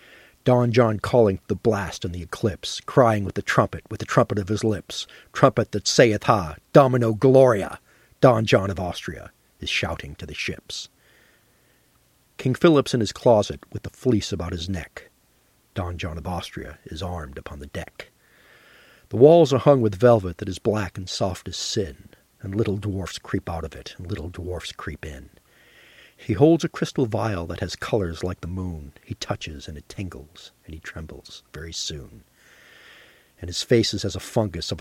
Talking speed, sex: 185 wpm, male